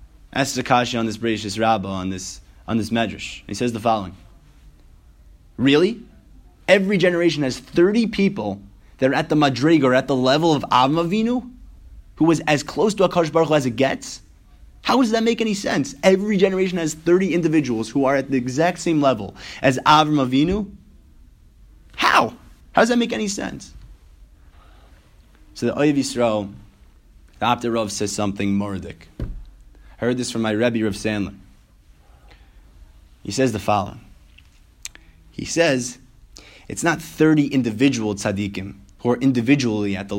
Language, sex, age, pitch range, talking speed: English, male, 20-39, 95-135 Hz, 155 wpm